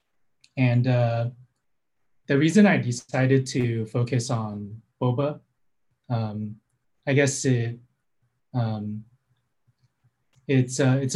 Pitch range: 110-130 Hz